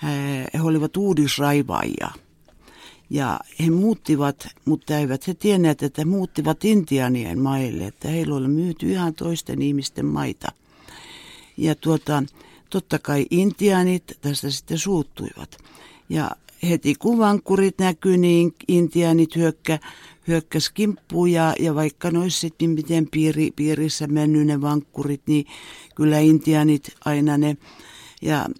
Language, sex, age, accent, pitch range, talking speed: Finnish, female, 60-79, native, 145-175 Hz, 130 wpm